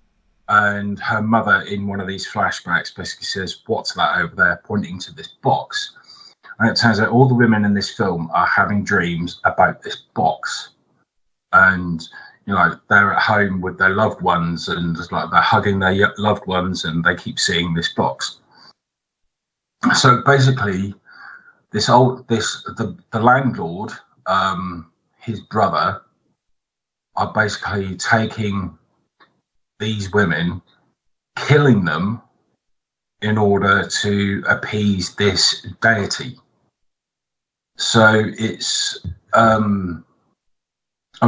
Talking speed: 120 wpm